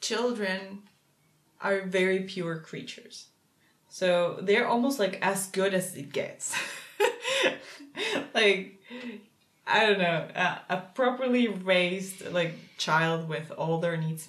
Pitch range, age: 170-200 Hz, 20-39